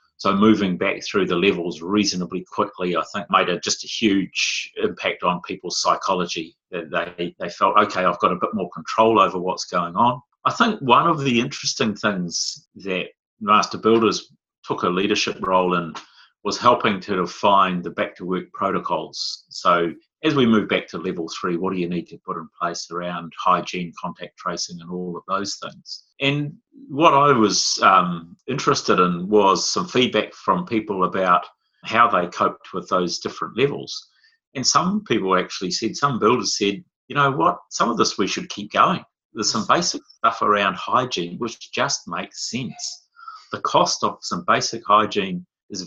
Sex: male